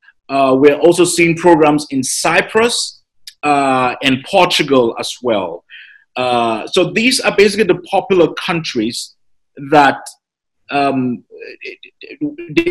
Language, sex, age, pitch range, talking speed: English, male, 30-49, 150-200 Hz, 100 wpm